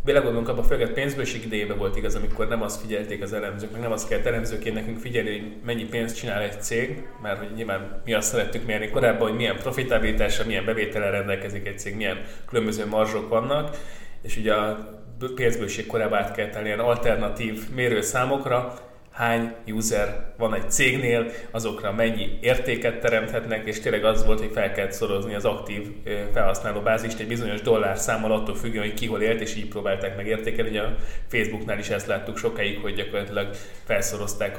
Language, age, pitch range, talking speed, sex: Hungarian, 20-39, 105-115 Hz, 170 wpm, male